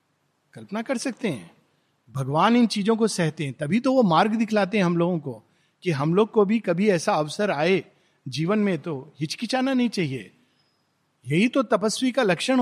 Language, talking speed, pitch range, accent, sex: Hindi, 185 wpm, 170-235 Hz, native, male